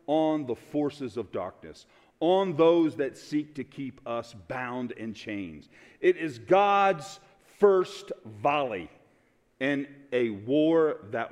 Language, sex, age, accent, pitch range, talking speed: English, male, 50-69, American, 140-230 Hz, 125 wpm